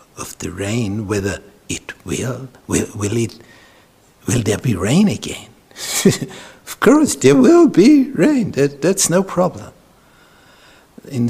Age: 60-79